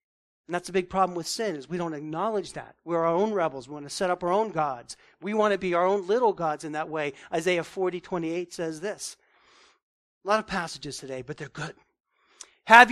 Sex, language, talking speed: male, English, 230 wpm